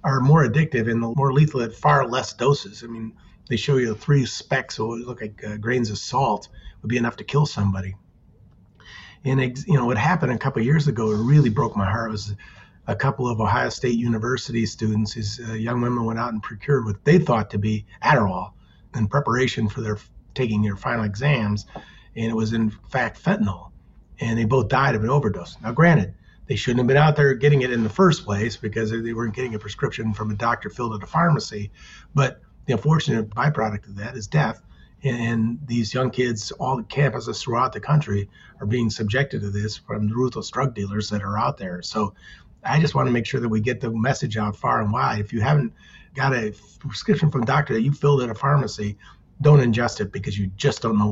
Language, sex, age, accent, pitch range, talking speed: English, male, 40-59, American, 105-130 Hz, 225 wpm